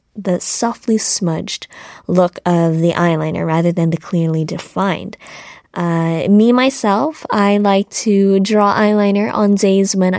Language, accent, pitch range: Korean, American, 180-230 Hz